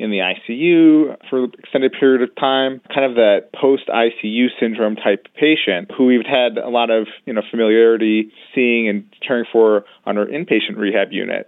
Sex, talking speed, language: male, 180 wpm, English